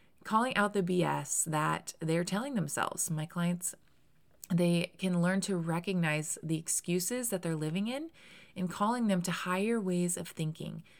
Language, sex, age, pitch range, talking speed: English, female, 20-39, 155-185 Hz, 160 wpm